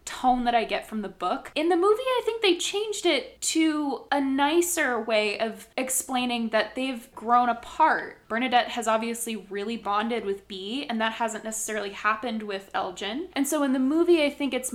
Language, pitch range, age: English, 210-265 Hz, 10-29